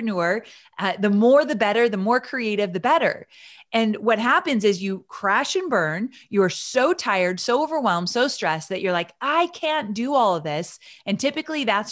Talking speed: 190 wpm